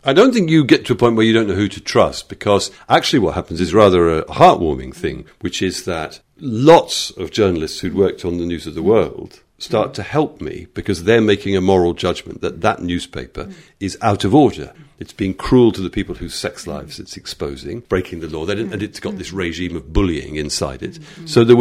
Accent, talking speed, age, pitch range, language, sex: British, 225 wpm, 50-69, 95-125 Hz, English, male